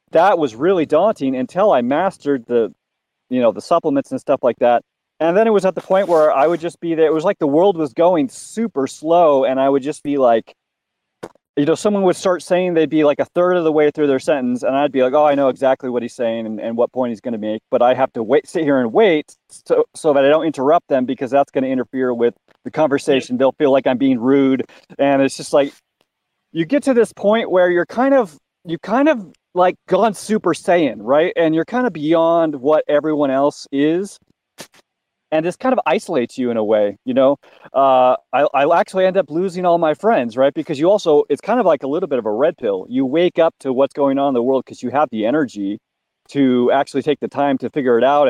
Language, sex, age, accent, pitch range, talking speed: English, male, 30-49, American, 135-185 Hz, 250 wpm